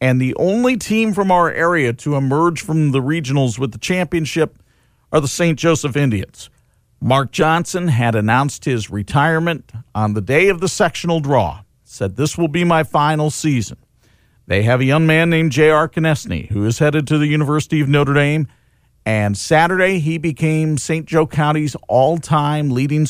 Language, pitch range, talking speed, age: English, 115-160 Hz, 170 wpm, 50-69